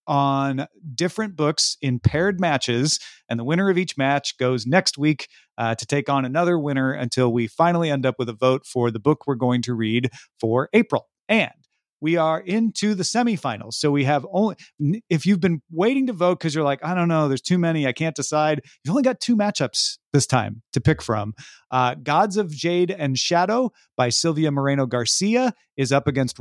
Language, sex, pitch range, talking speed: English, male, 125-170 Hz, 200 wpm